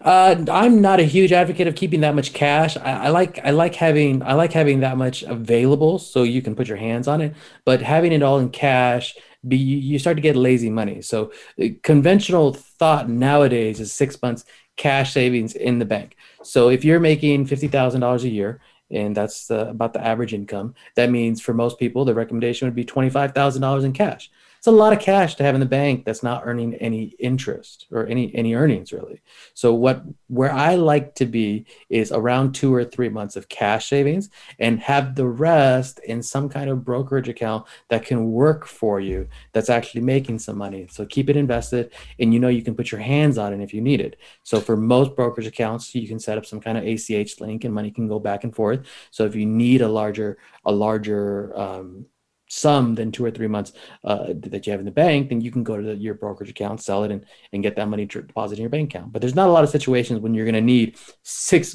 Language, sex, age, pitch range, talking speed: English, male, 30-49, 110-140 Hz, 225 wpm